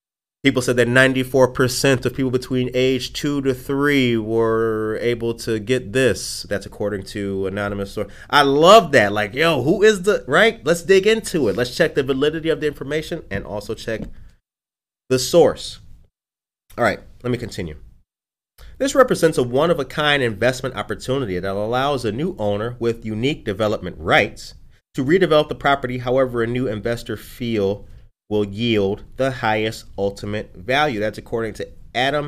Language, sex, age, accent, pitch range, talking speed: English, male, 30-49, American, 105-145 Hz, 165 wpm